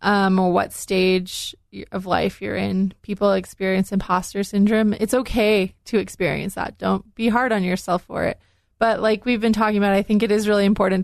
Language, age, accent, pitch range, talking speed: English, 20-39, American, 195-225 Hz, 195 wpm